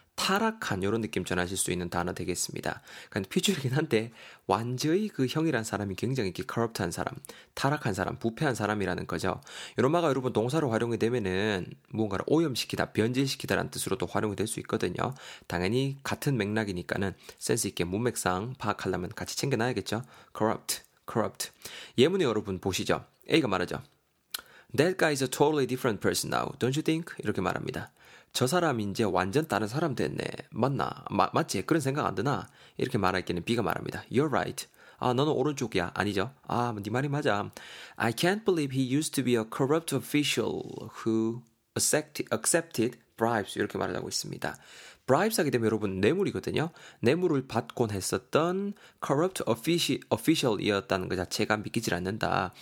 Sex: male